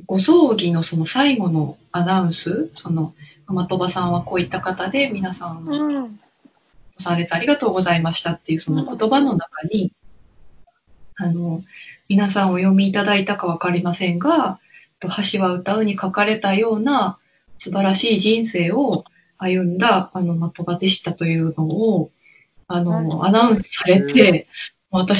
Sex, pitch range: female, 175-220 Hz